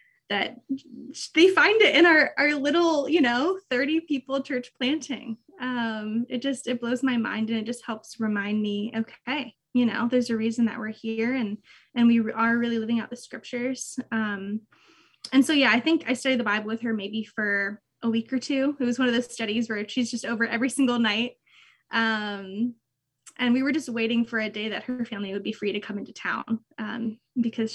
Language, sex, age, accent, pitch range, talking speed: English, female, 20-39, American, 220-255 Hz, 210 wpm